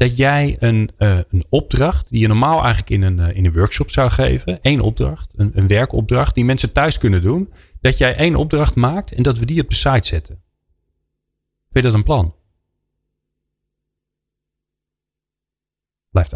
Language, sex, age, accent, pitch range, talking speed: Dutch, male, 40-59, Dutch, 85-125 Hz, 170 wpm